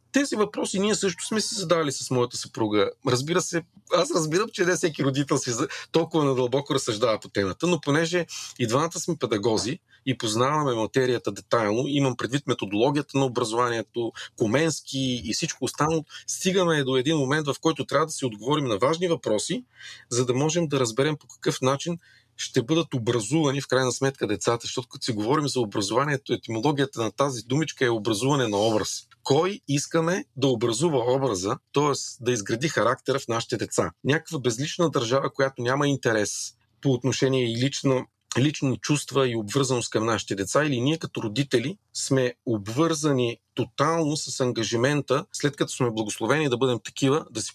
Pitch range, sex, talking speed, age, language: 125-155 Hz, male, 165 wpm, 40-59, Bulgarian